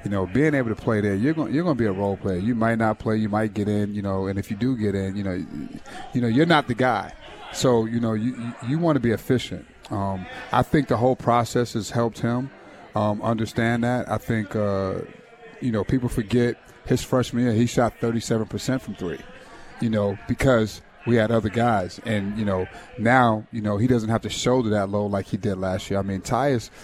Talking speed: 235 wpm